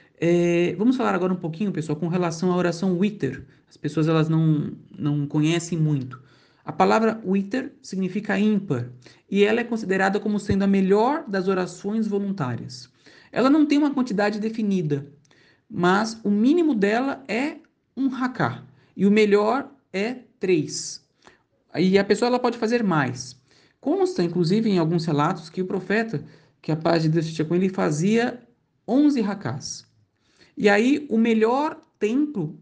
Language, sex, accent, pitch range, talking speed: Portuguese, male, Brazilian, 165-230 Hz, 150 wpm